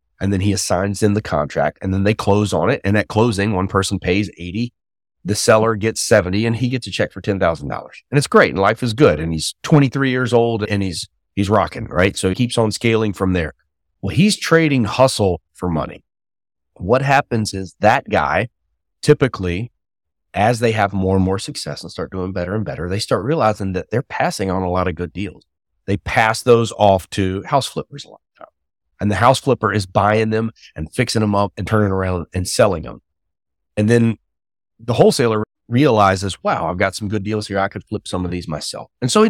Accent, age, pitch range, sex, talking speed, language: American, 30-49, 95-120 Hz, male, 215 wpm, English